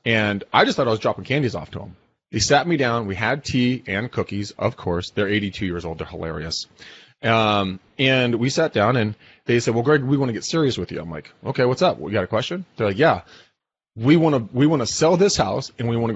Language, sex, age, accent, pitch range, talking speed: English, male, 30-49, American, 105-145 Hz, 240 wpm